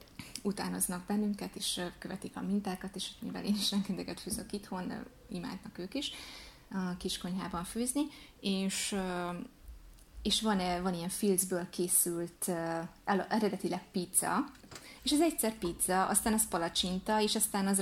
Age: 20-39